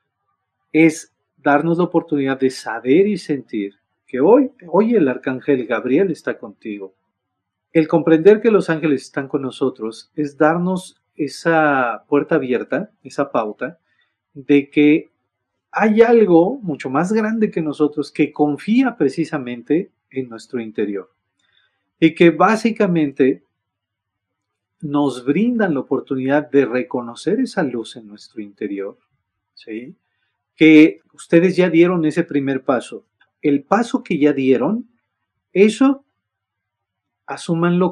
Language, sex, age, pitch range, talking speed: Spanish, male, 40-59, 125-170 Hz, 120 wpm